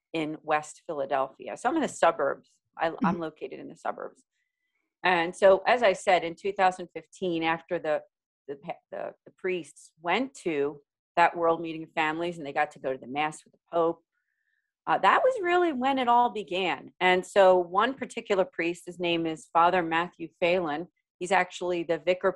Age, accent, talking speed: 40-59, American, 185 wpm